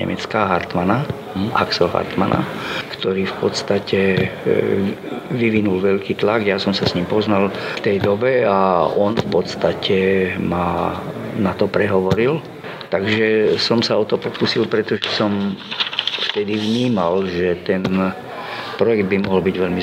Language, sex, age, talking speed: Slovak, male, 50-69, 135 wpm